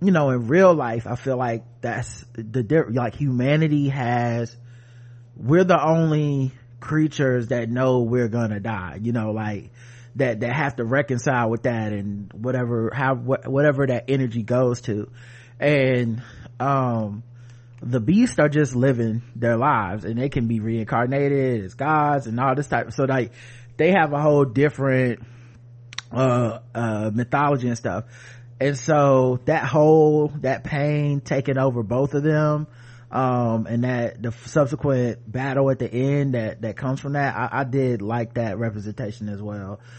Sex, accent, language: male, American, English